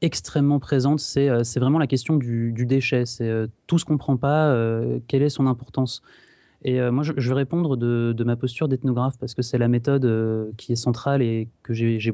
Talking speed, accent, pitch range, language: 235 wpm, French, 120-145 Hz, French